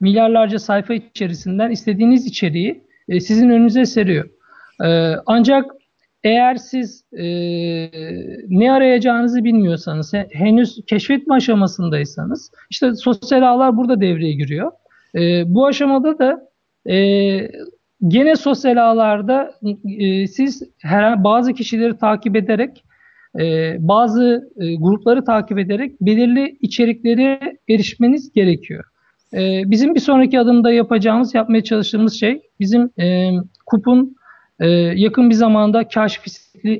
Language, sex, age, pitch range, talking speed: Turkish, male, 50-69, 200-250 Hz, 100 wpm